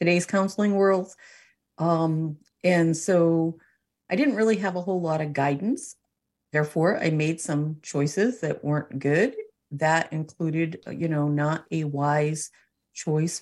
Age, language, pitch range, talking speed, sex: 40-59, English, 145-170 Hz, 140 wpm, female